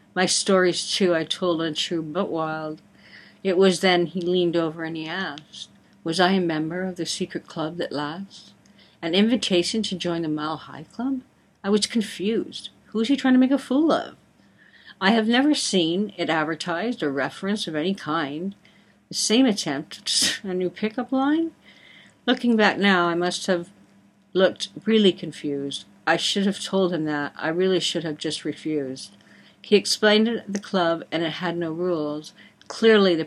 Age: 60-79